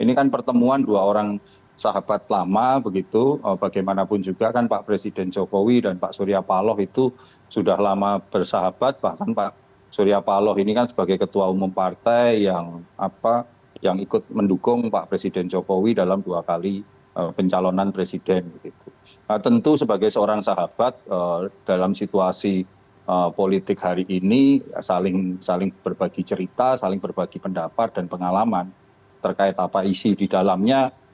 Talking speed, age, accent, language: 135 wpm, 40-59, native, Indonesian